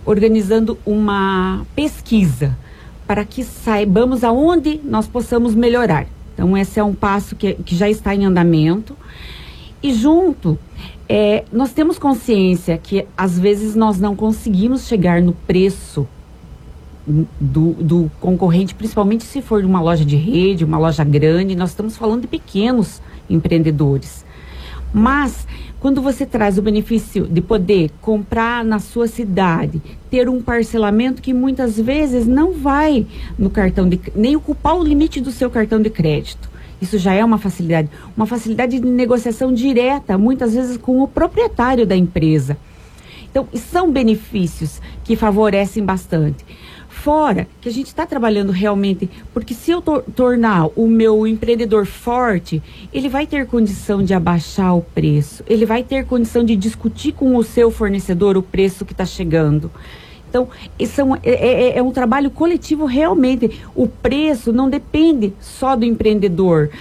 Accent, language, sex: Brazilian, Portuguese, female